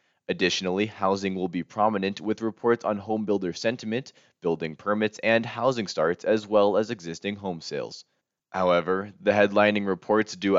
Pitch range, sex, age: 90-105 Hz, male, 20-39